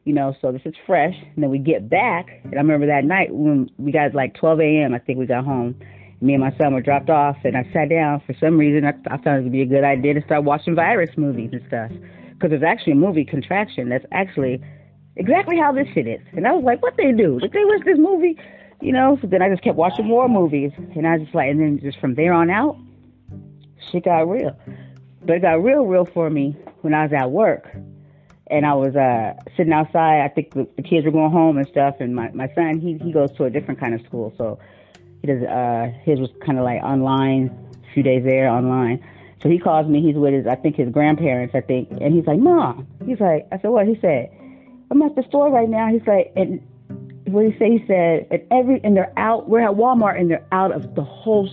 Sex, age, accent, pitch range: female, 40-59, American, 135-190 Hz